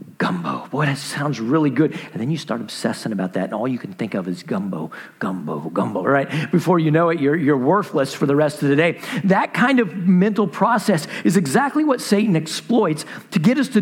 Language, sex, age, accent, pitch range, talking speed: English, male, 50-69, American, 130-200 Hz, 220 wpm